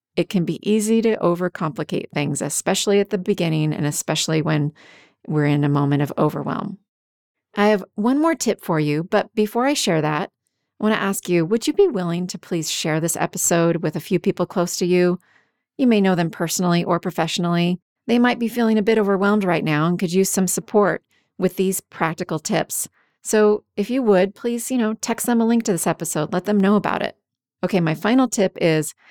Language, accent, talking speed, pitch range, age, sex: English, American, 210 wpm, 165-210 Hz, 30-49, female